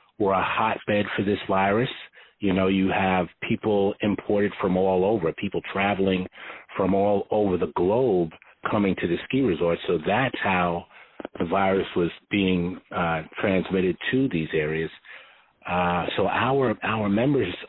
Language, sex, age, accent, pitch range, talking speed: English, male, 40-59, American, 90-105 Hz, 150 wpm